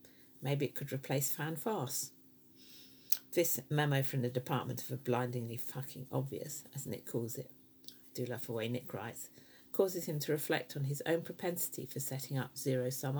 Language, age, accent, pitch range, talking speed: English, 50-69, British, 120-150 Hz, 175 wpm